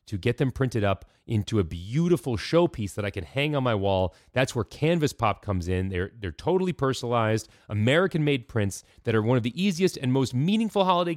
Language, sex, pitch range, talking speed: English, male, 105-150 Hz, 205 wpm